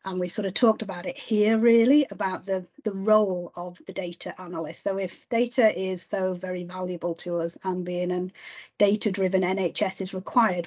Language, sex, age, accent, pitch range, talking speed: English, female, 40-59, British, 180-215 Hz, 195 wpm